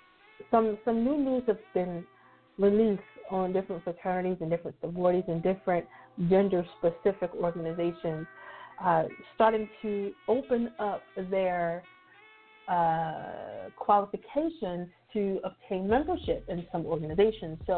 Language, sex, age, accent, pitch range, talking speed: English, female, 30-49, American, 170-215 Hz, 110 wpm